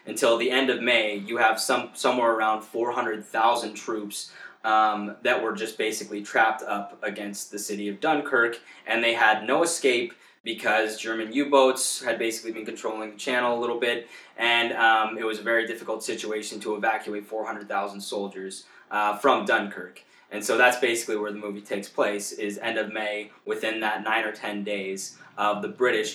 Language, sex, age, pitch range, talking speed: English, male, 20-39, 105-125 Hz, 180 wpm